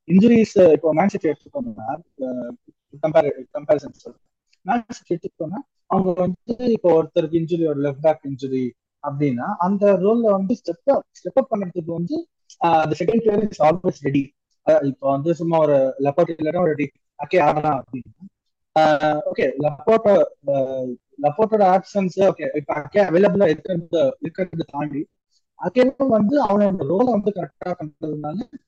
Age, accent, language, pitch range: 20-39, native, Tamil, 155-205 Hz